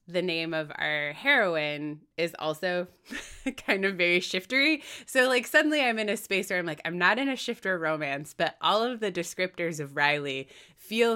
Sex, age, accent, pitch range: female, 20-39, American, 160-225 Hz